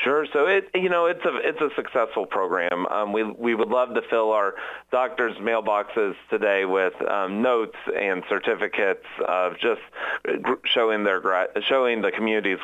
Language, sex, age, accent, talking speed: English, male, 30-49, American, 160 wpm